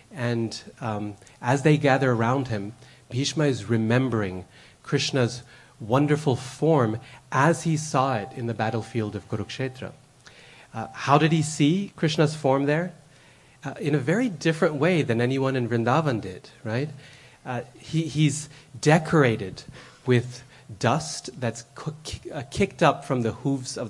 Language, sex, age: English, male, 30-49